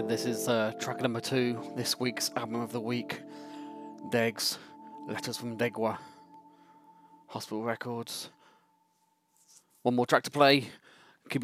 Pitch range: 115-145 Hz